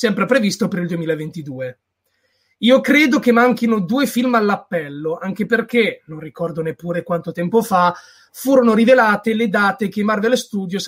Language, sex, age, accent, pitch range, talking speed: Italian, male, 30-49, native, 175-245 Hz, 155 wpm